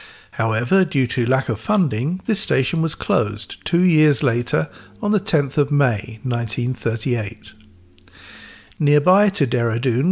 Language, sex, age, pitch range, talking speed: English, male, 50-69, 120-155 Hz, 130 wpm